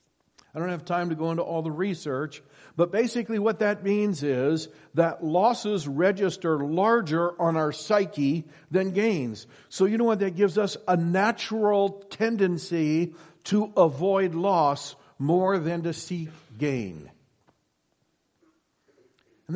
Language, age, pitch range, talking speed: English, 50-69, 140-180 Hz, 135 wpm